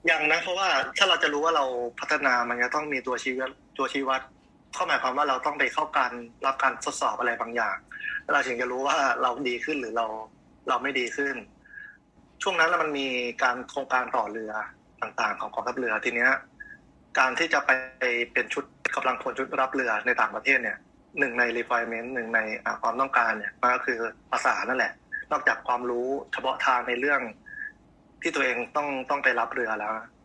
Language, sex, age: Thai, male, 20-39